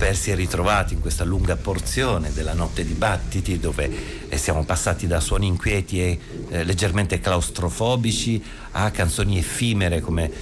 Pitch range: 80-105 Hz